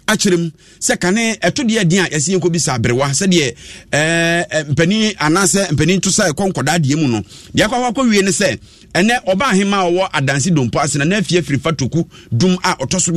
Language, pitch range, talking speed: English, 155-195 Hz, 180 wpm